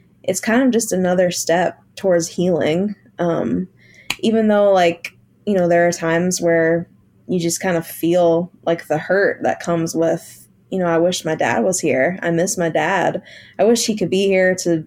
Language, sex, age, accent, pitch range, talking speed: English, female, 20-39, American, 165-190 Hz, 195 wpm